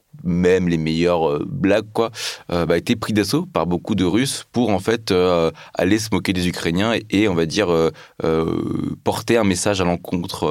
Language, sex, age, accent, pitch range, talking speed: French, male, 20-39, French, 85-105 Hz, 205 wpm